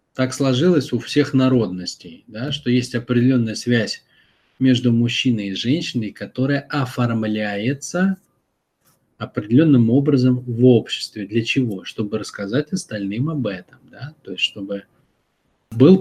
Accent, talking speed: native, 120 wpm